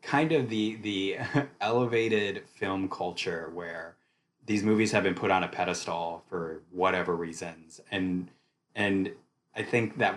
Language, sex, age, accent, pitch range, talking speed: English, male, 20-39, American, 85-110 Hz, 140 wpm